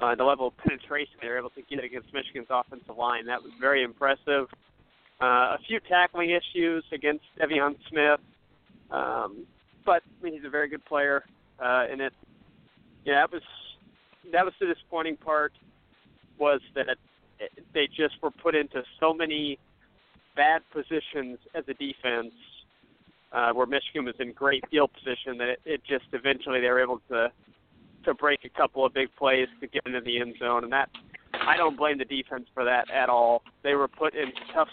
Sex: male